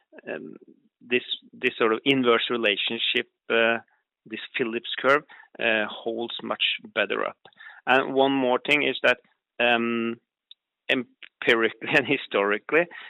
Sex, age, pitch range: male, 30-49, 115-130 Hz